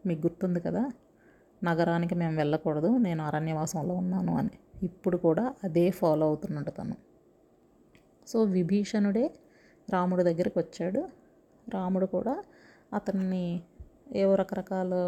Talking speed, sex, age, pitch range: 105 wpm, female, 30-49, 175-205 Hz